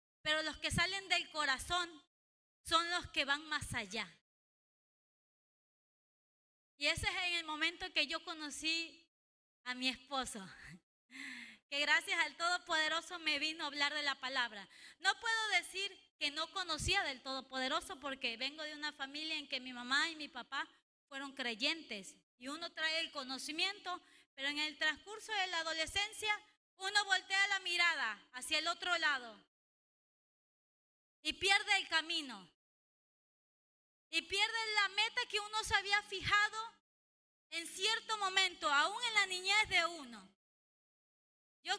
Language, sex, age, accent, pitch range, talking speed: English, female, 30-49, American, 290-390 Hz, 140 wpm